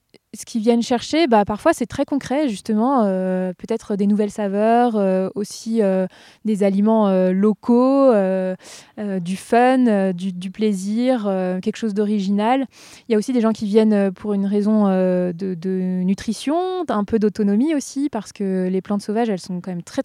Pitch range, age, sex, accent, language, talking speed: 190-225 Hz, 20-39, female, French, French, 190 wpm